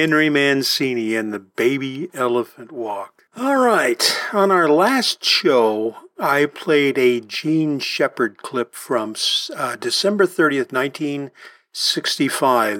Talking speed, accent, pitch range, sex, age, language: 115 wpm, American, 125-200 Hz, male, 50-69, English